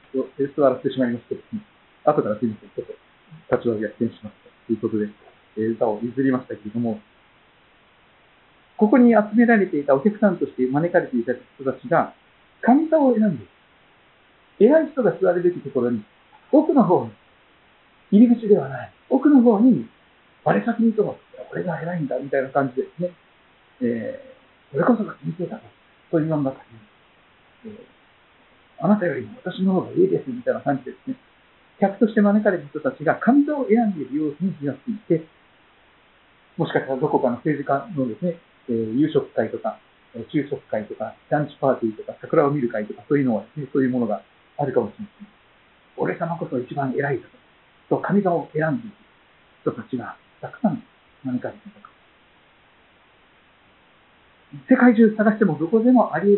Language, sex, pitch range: Japanese, male, 130-220 Hz